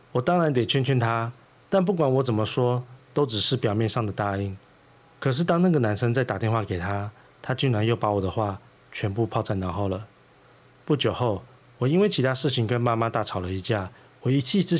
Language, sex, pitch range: Chinese, male, 105-135 Hz